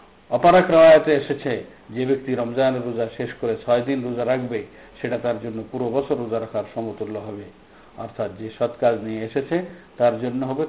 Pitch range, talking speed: 115-140 Hz, 170 wpm